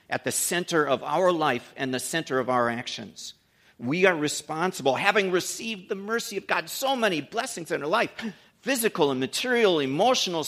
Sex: male